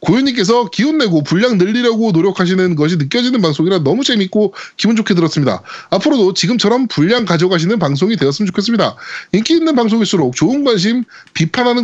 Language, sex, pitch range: Korean, male, 165-250 Hz